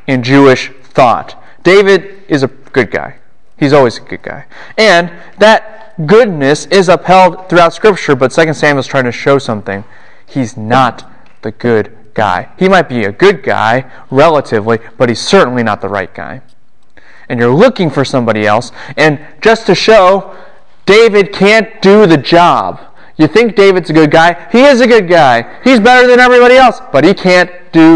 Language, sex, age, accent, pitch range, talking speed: English, male, 30-49, American, 125-180 Hz, 175 wpm